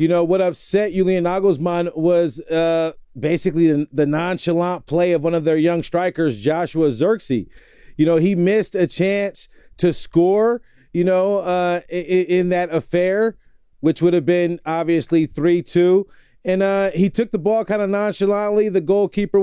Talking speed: 160 wpm